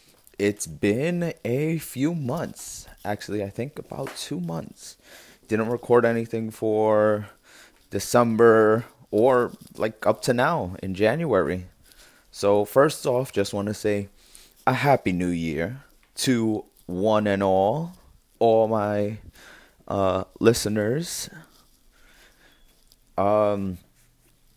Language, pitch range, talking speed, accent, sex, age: English, 95-120 Hz, 105 wpm, American, male, 20-39